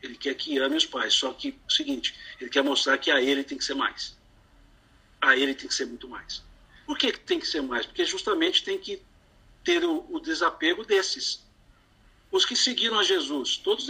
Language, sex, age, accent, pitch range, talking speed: Portuguese, male, 60-79, Brazilian, 235-370 Hz, 210 wpm